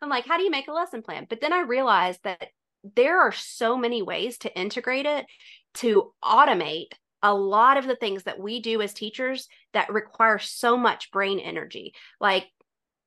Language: English